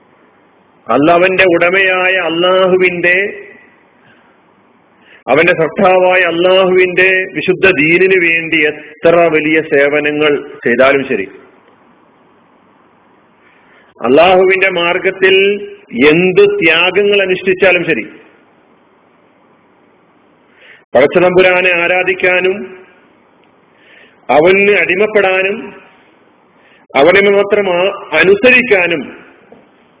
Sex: male